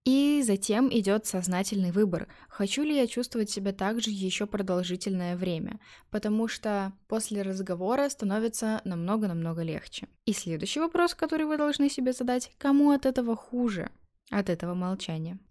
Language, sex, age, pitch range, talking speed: Russian, female, 10-29, 185-235 Hz, 145 wpm